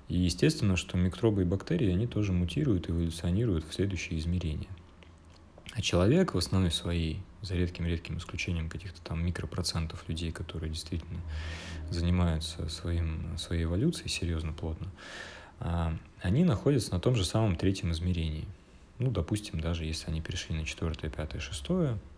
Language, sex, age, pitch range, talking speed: Russian, male, 30-49, 80-95 Hz, 140 wpm